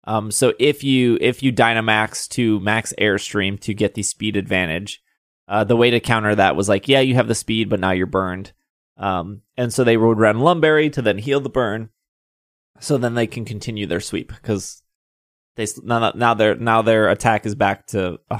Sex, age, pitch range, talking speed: male, 20-39, 105-135 Hz, 200 wpm